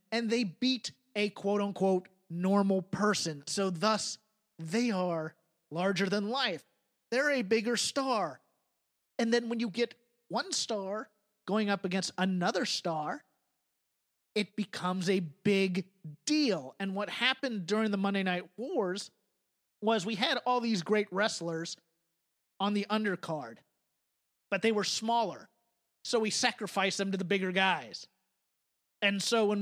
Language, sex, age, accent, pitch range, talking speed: English, male, 30-49, American, 185-215 Hz, 140 wpm